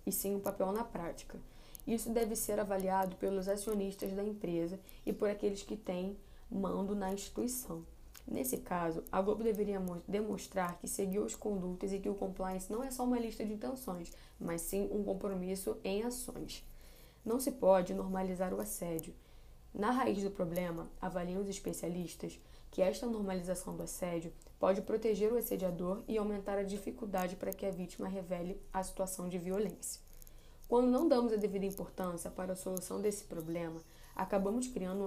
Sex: female